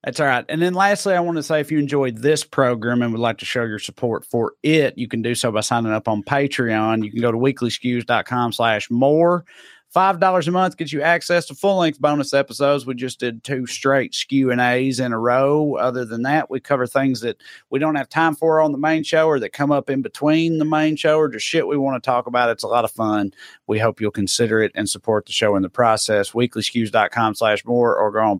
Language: English